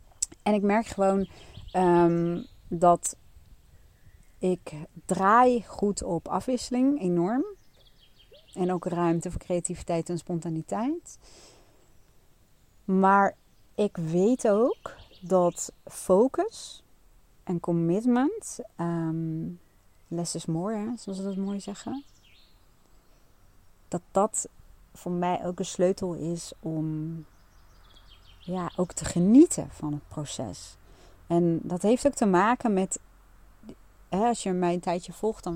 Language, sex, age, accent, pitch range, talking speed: Dutch, female, 40-59, Dutch, 155-195 Hz, 110 wpm